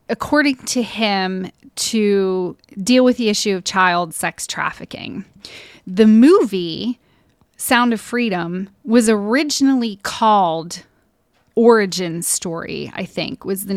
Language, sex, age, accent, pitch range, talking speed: English, female, 30-49, American, 190-245 Hz, 115 wpm